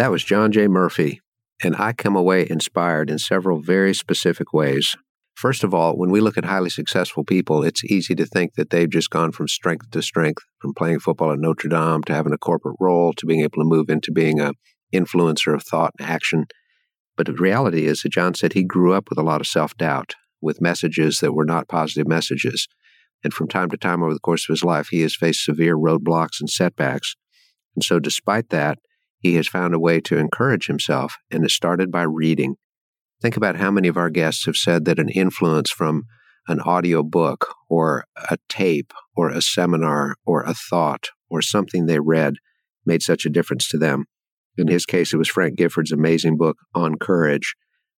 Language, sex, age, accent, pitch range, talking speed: English, male, 50-69, American, 80-90 Hz, 205 wpm